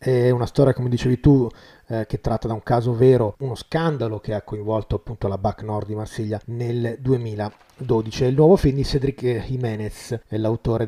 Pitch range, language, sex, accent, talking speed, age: 110-135 Hz, Italian, male, native, 180 wpm, 30-49